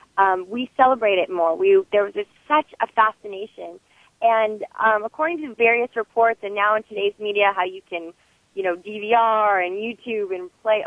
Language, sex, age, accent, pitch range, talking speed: English, female, 30-49, American, 195-250 Hz, 180 wpm